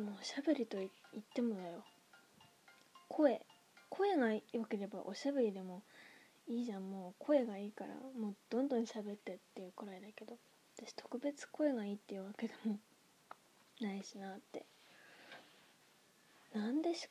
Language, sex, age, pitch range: Japanese, female, 20-39, 205-265 Hz